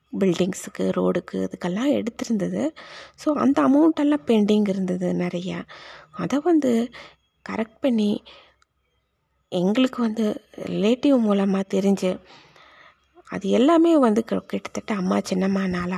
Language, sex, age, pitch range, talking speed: Tamil, female, 20-39, 185-255 Hz, 95 wpm